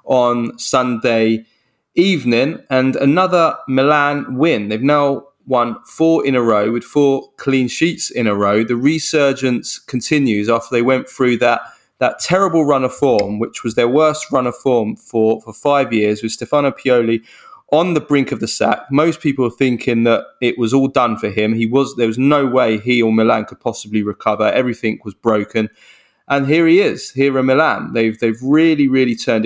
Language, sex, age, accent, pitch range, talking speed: English, male, 20-39, British, 110-140 Hz, 185 wpm